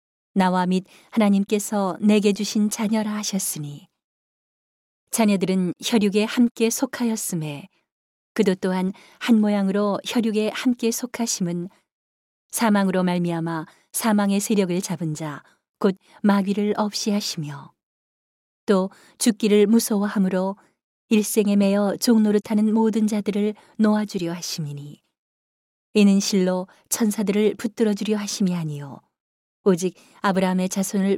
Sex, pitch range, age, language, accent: female, 185-215 Hz, 40-59, Korean, native